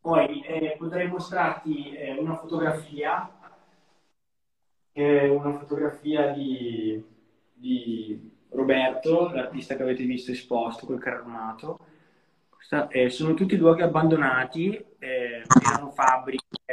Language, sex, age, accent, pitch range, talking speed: Italian, male, 20-39, native, 115-135 Hz, 100 wpm